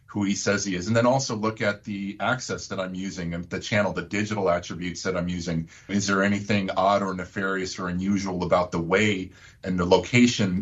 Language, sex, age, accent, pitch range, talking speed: English, male, 50-69, American, 95-110 Hz, 215 wpm